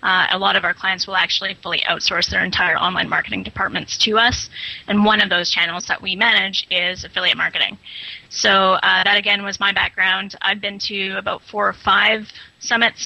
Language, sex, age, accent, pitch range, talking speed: English, female, 20-39, American, 195-235 Hz, 200 wpm